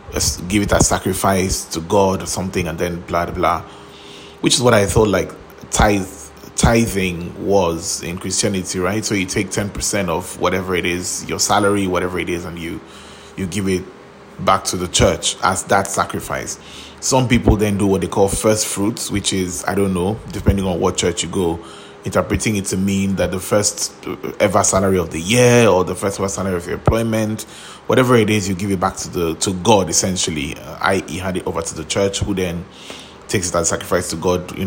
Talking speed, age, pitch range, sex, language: 205 wpm, 20-39, 85-100 Hz, male, English